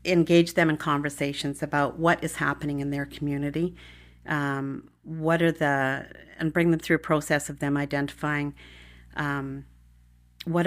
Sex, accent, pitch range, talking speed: female, American, 125-150 Hz, 145 wpm